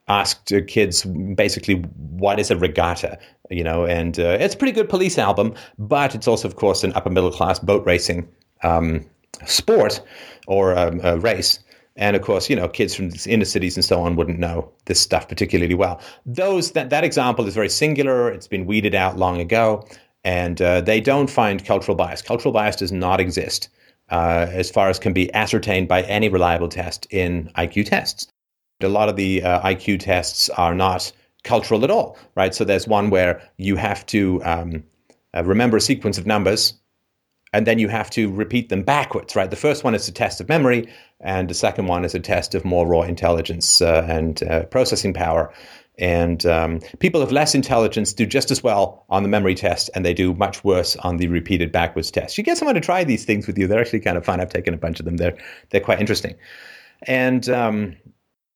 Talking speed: 205 wpm